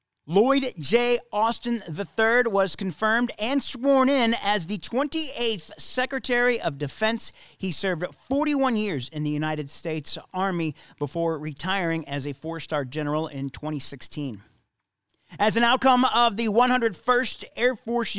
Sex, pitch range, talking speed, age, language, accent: male, 160-240 Hz, 130 wpm, 40-59, English, American